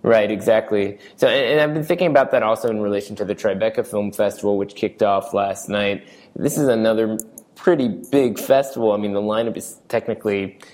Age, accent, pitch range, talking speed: 20-39, American, 100-115 Hz, 190 wpm